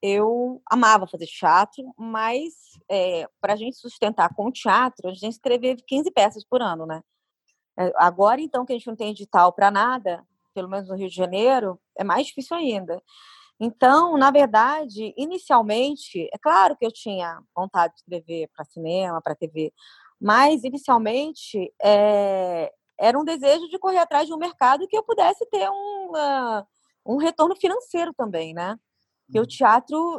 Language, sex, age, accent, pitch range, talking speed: Portuguese, female, 20-39, Brazilian, 195-270 Hz, 165 wpm